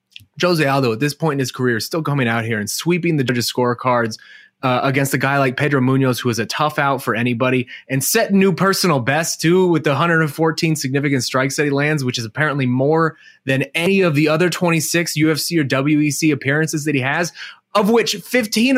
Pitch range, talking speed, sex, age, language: 120-160 Hz, 210 wpm, male, 20-39, English